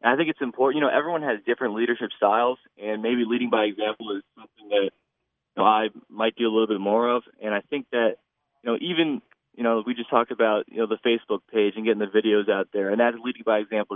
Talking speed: 255 wpm